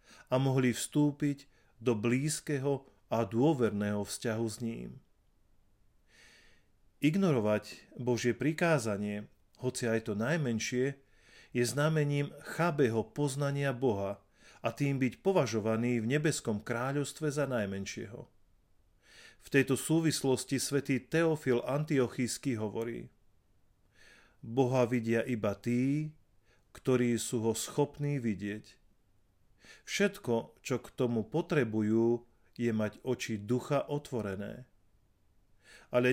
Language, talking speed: Slovak, 95 wpm